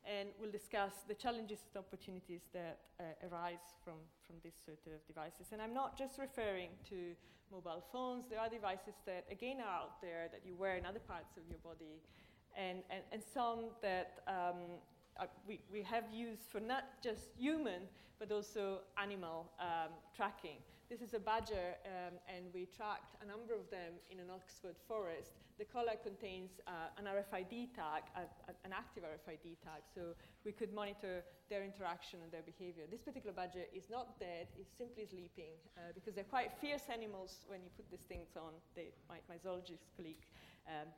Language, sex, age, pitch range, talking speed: English, female, 40-59, 175-230 Hz, 185 wpm